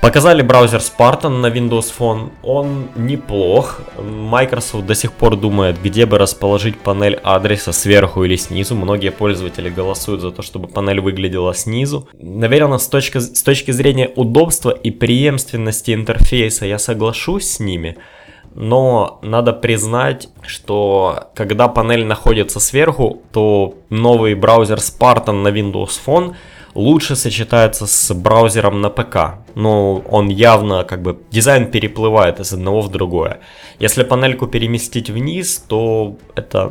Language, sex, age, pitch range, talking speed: Russian, male, 20-39, 95-120 Hz, 130 wpm